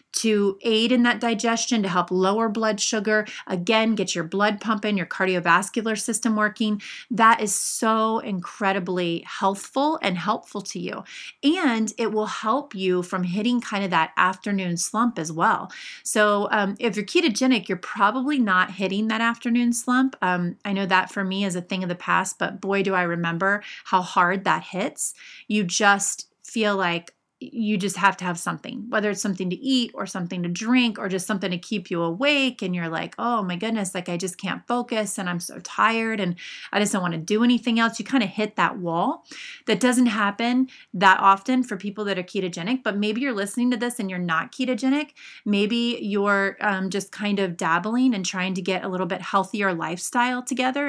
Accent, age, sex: American, 30-49, female